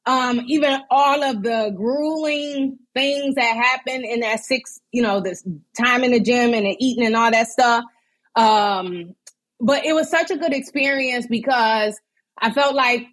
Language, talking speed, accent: English, 175 wpm, American